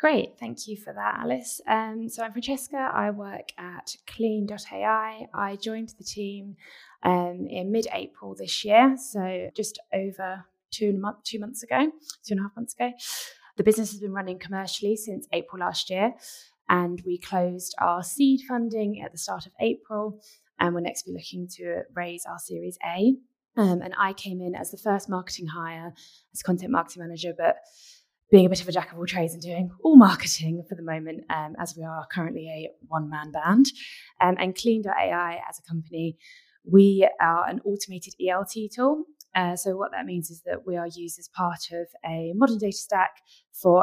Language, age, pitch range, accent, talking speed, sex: English, 20-39, 175-215 Hz, British, 185 wpm, female